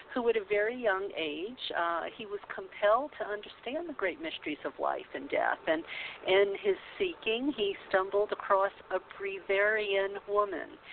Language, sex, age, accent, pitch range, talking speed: English, female, 50-69, American, 165-230 Hz, 160 wpm